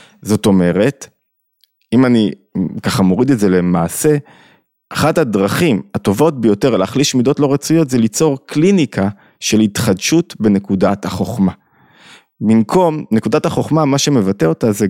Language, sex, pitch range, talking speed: Hebrew, male, 105-155 Hz, 125 wpm